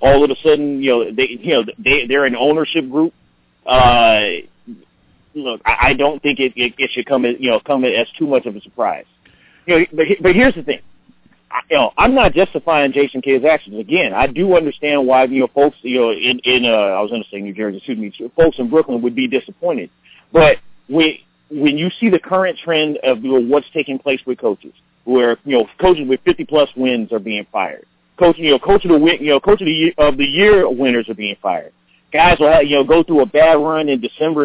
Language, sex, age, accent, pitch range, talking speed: English, male, 40-59, American, 130-160 Hz, 230 wpm